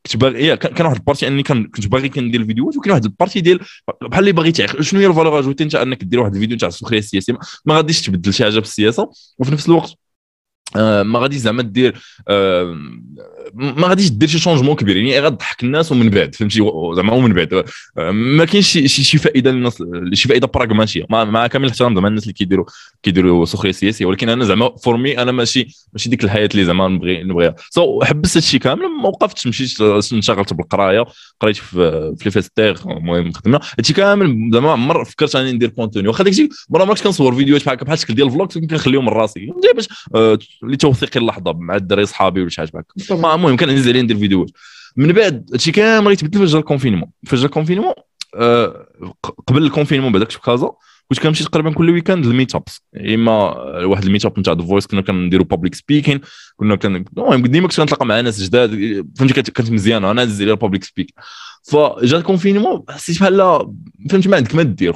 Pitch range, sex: 105-160 Hz, male